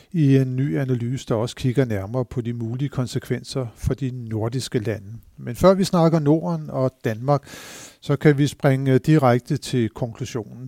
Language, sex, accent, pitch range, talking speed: Danish, male, native, 120-145 Hz, 170 wpm